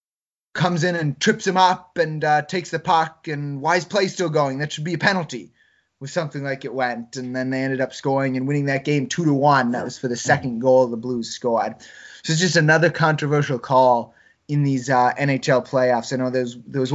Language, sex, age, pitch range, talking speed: English, male, 20-39, 125-150 Hz, 230 wpm